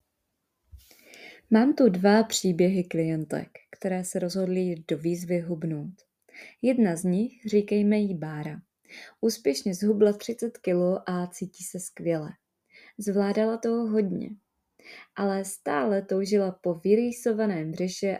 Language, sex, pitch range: Czech, female, 170-210 Hz